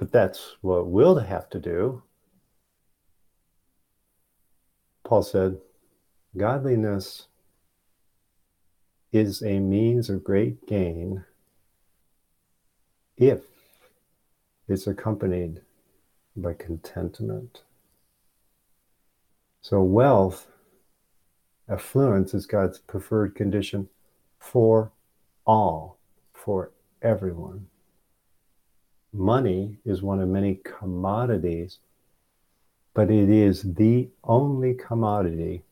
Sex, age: male, 50-69